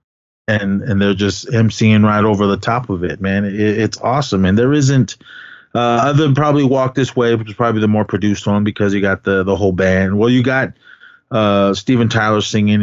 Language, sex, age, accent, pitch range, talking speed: English, male, 30-49, American, 95-120 Hz, 215 wpm